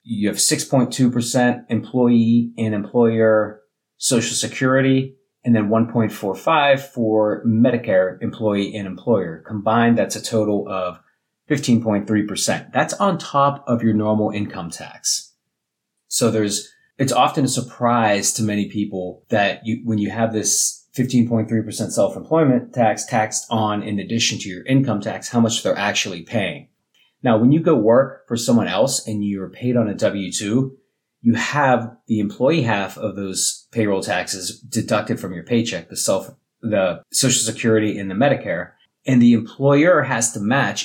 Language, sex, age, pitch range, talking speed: English, male, 30-49, 105-125 Hz, 150 wpm